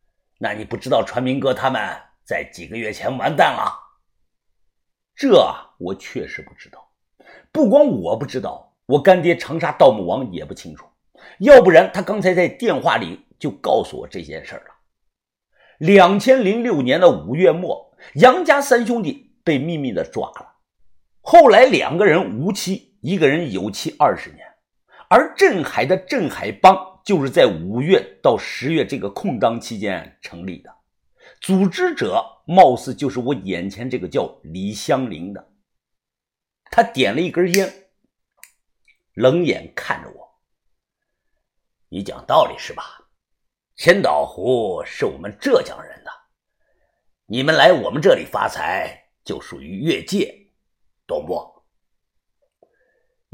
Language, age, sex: Chinese, 50-69, male